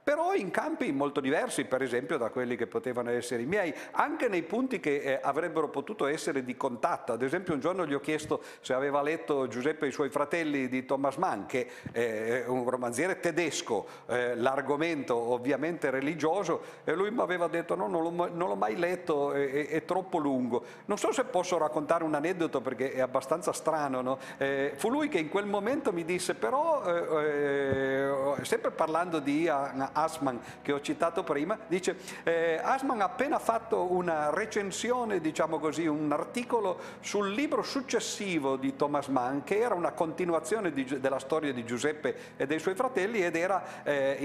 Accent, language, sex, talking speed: native, Italian, male, 185 wpm